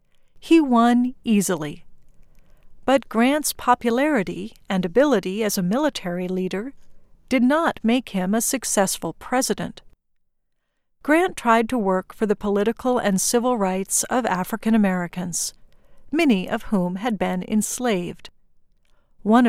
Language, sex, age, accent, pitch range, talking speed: English, female, 50-69, American, 195-245 Hz, 115 wpm